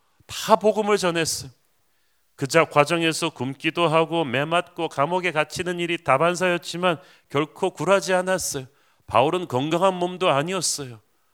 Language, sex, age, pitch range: Korean, male, 40-59, 140-180 Hz